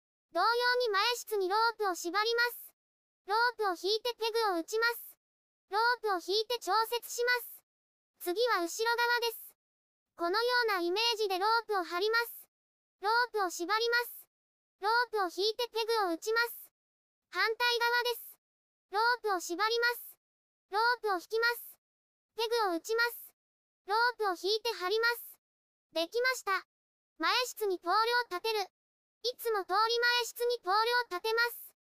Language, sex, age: Japanese, male, 20-39